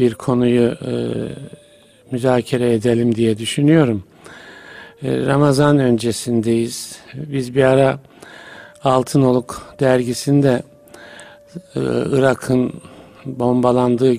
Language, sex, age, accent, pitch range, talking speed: Turkish, male, 50-69, native, 115-135 Hz, 75 wpm